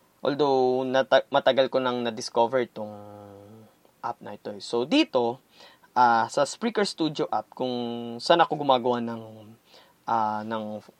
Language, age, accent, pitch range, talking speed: Filipino, 20-39, native, 110-155 Hz, 125 wpm